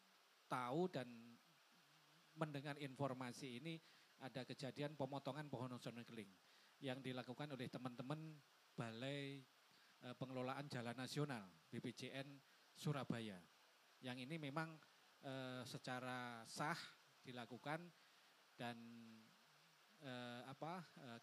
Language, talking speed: Indonesian, 95 wpm